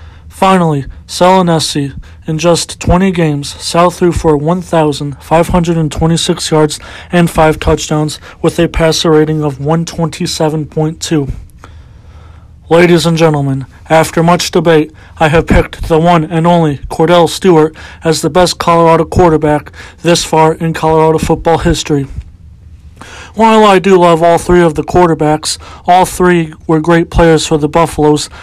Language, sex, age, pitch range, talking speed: English, male, 40-59, 155-170 Hz, 135 wpm